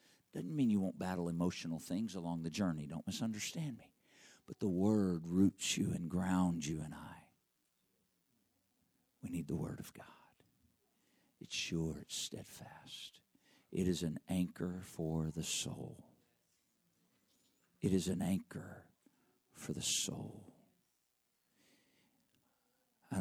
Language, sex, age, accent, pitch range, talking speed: English, male, 50-69, American, 85-90 Hz, 125 wpm